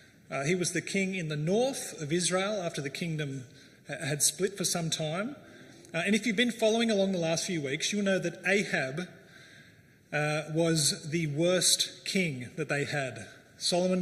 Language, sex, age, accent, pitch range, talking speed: English, male, 30-49, Australian, 150-195 Hz, 180 wpm